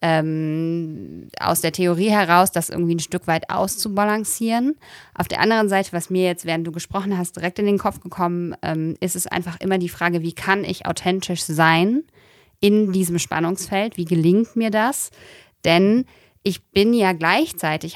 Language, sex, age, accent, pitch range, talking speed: German, female, 20-39, German, 165-190 Hz, 170 wpm